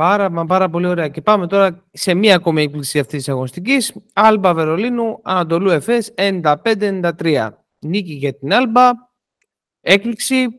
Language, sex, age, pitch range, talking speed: Greek, male, 30-49, 170-220 Hz, 135 wpm